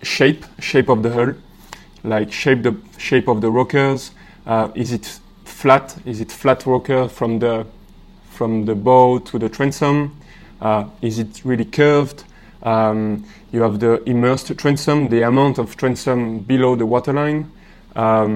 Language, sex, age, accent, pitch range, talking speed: English, male, 20-39, French, 110-140 Hz, 155 wpm